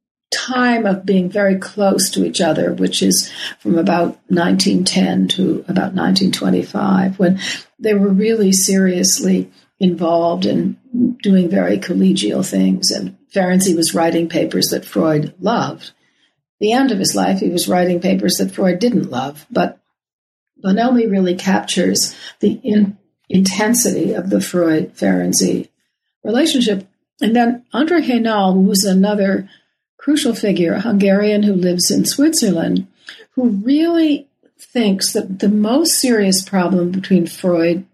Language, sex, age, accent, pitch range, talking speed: English, female, 60-79, American, 175-225 Hz, 130 wpm